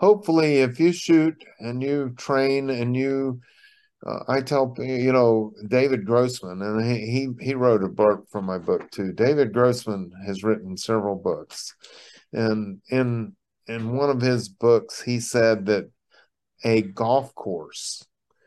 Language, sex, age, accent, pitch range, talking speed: English, male, 50-69, American, 105-135 Hz, 145 wpm